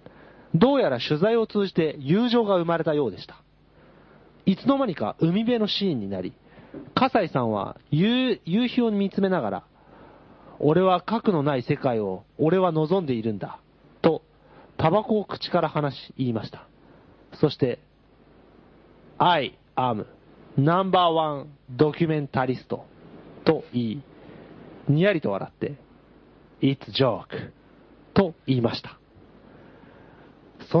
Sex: male